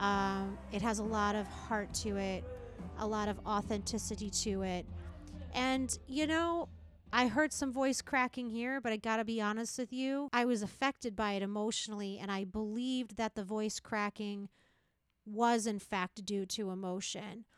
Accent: American